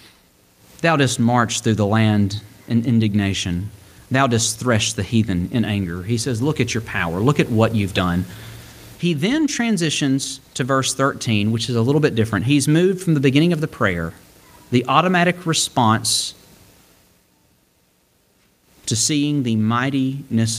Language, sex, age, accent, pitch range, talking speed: English, male, 40-59, American, 110-140 Hz, 155 wpm